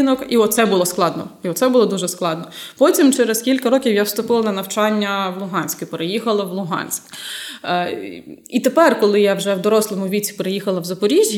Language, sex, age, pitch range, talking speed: Ukrainian, female, 20-39, 190-255 Hz, 180 wpm